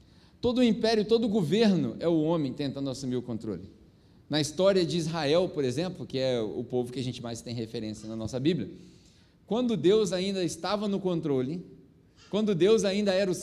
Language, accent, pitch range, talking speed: Portuguese, Brazilian, 140-205 Hz, 185 wpm